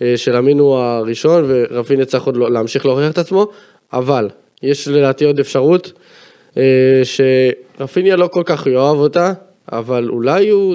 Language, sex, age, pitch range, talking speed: Hebrew, male, 20-39, 135-175 Hz, 140 wpm